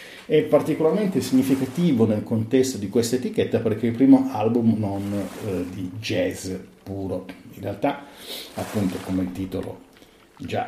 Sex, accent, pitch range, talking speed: male, native, 95-125 Hz, 140 wpm